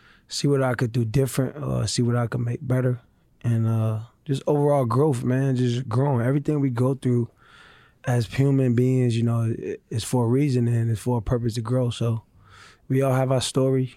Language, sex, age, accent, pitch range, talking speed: English, male, 20-39, American, 120-130 Hz, 200 wpm